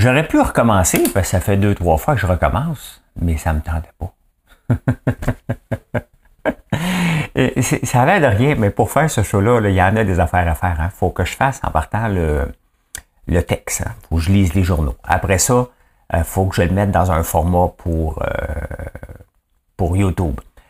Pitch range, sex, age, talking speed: 85-105 Hz, male, 60-79, 205 wpm